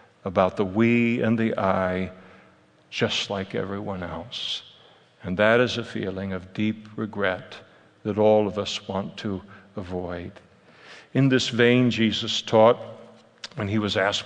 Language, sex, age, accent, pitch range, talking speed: English, male, 60-79, American, 105-120 Hz, 145 wpm